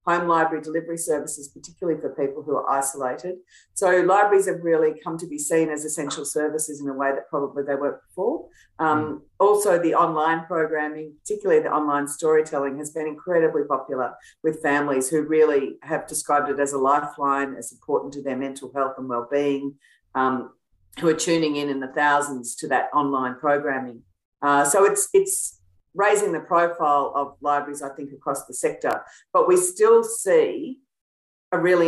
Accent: Australian